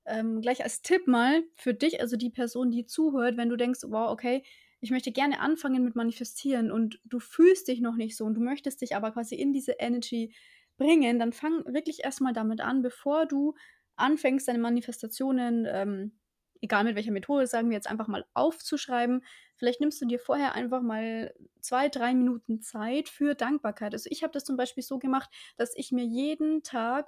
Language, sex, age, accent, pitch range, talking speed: German, female, 20-39, German, 230-275 Hz, 195 wpm